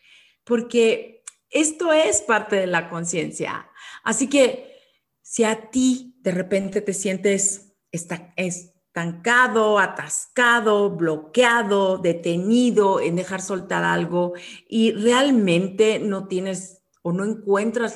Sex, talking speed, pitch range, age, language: female, 105 wpm, 170-225 Hz, 40-59, English